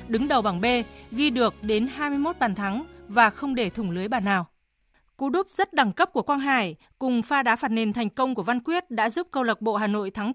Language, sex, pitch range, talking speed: Vietnamese, female, 220-265 Hz, 250 wpm